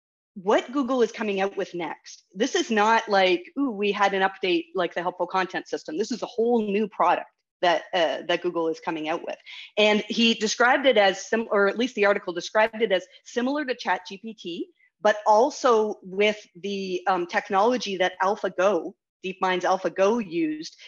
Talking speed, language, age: 180 wpm, English, 30-49